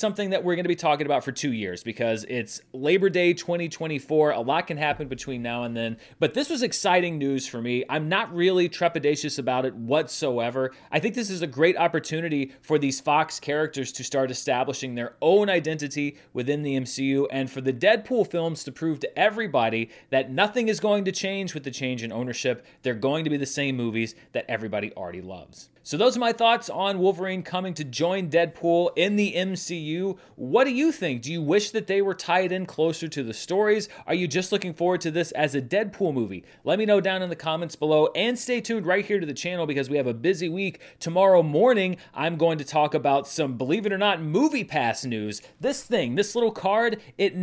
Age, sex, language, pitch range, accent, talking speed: 30-49, male, English, 135-190 Hz, American, 220 wpm